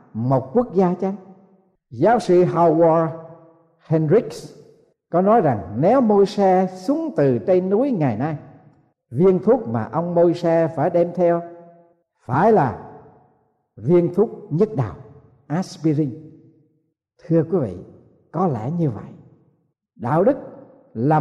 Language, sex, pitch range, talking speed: Vietnamese, male, 135-180 Hz, 125 wpm